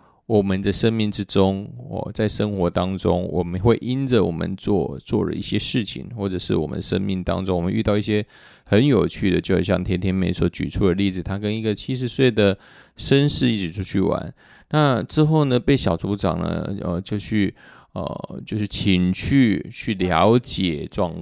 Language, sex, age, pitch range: Chinese, male, 20-39, 95-115 Hz